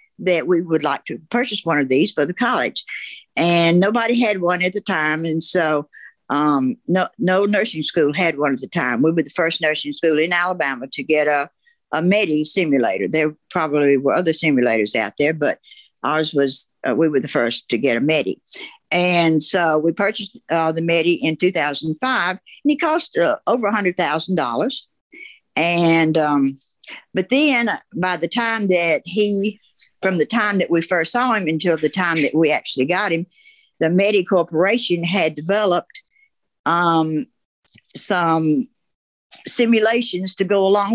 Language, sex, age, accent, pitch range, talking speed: English, female, 60-79, American, 155-205 Hz, 165 wpm